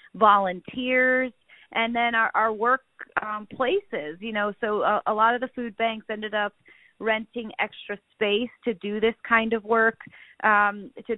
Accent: American